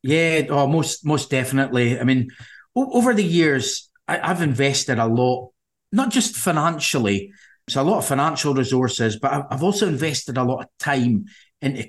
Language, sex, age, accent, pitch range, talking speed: English, male, 30-49, British, 120-145 Hz, 170 wpm